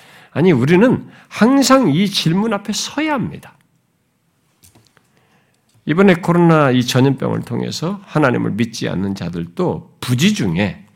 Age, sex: 50-69, male